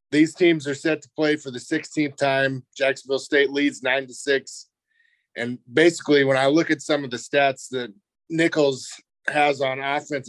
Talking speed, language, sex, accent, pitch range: 180 wpm, English, male, American, 130-150 Hz